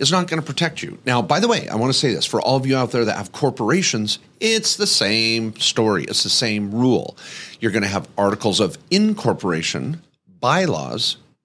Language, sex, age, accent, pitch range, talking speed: English, male, 40-59, American, 105-150 Hz, 210 wpm